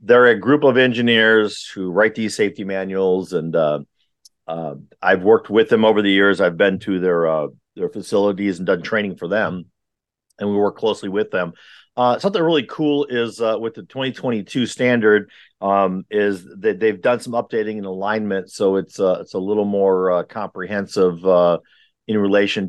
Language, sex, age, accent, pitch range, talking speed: English, male, 50-69, American, 95-115 Hz, 180 wpm